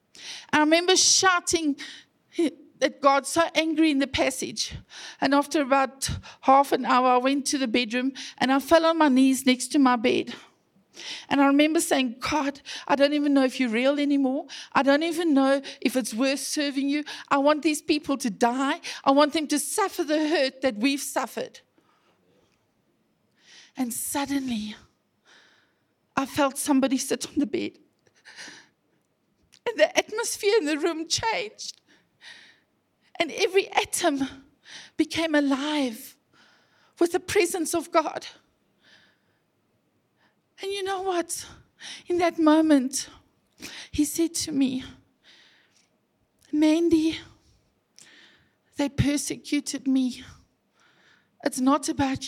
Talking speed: 130 wpm